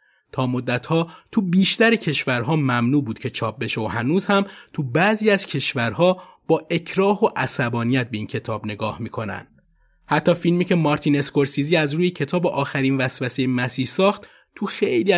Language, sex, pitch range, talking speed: Persian, male, 120-190 Hz, 160 wpm